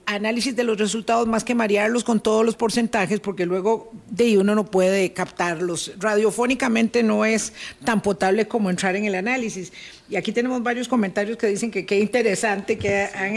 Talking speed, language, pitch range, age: 185 wpm, Spanish, 185-235 Hz, 50-69